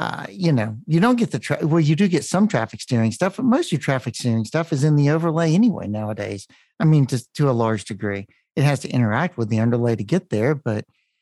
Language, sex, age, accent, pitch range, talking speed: English, male, 50-69, American, 115-165 Hz, 250 wpm